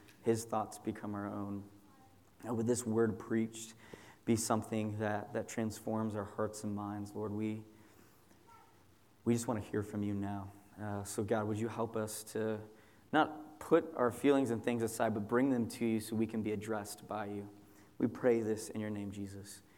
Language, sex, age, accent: English, male, 20-39, American